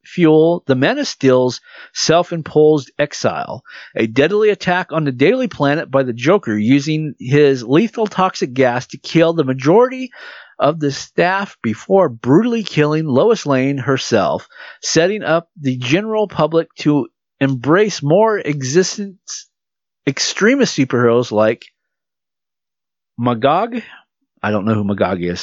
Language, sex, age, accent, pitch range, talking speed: English, male, 50-69, American, 110-165 Hz, 125 wpm